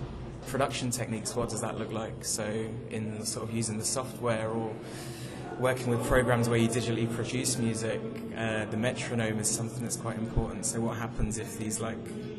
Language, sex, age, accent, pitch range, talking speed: Czech, male, 20-39, British, 115-125 Hz, 180 wpm